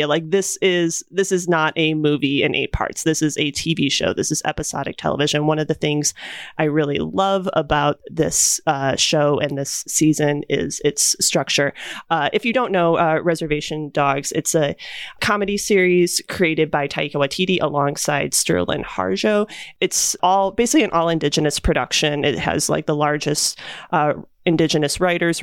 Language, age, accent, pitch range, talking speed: English, 30-49, American, 150-180 Hz, 170 wpm